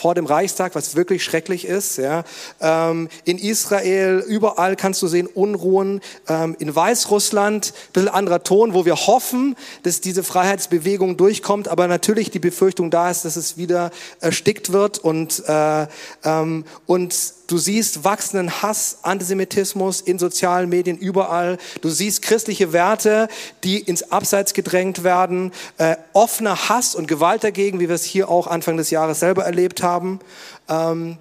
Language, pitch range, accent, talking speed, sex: German, 165-205 Hz, German, 155 wpm, male